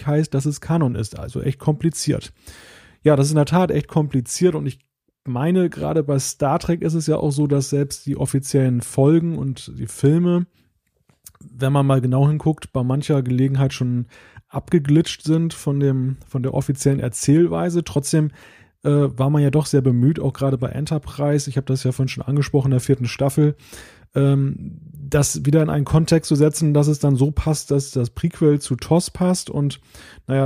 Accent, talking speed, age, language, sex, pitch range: German, 190 wpm, 30-49, German, male, 130-155 Hz